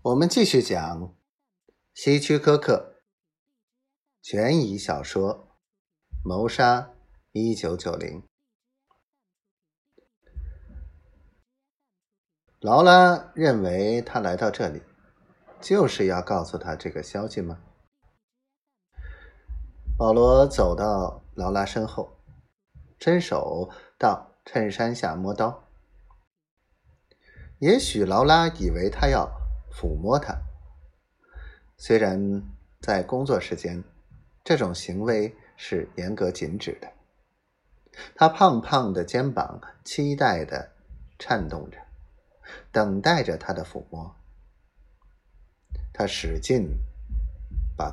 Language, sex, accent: Chinese, male, native